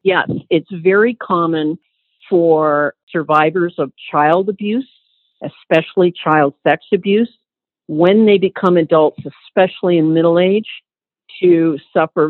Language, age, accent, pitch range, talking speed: English, 50-69, American, 150-180 Hz, 110 wpm